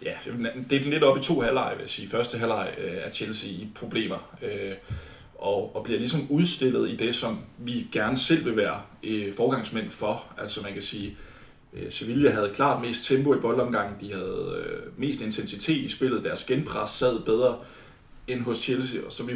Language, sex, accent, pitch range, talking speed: Danish, male, native, 110-145 Hz, 185 wpm